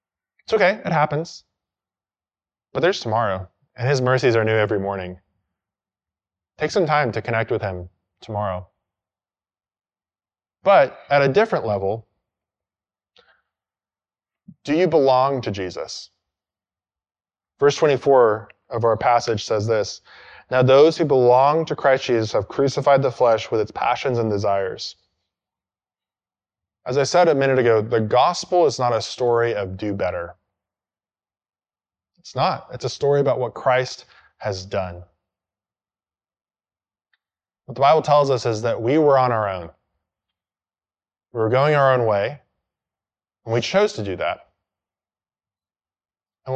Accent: American